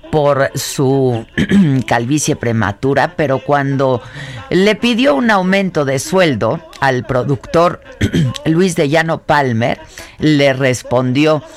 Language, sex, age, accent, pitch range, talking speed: Spanish, female, 50-69, Mexican, 120-170 Hz, 105 wpm